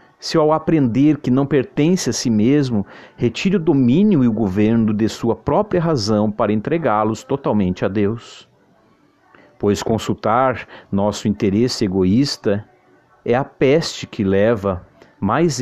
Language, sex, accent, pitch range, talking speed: Portuguese, male, Brazilian, 100-130 Hz, 135 wpm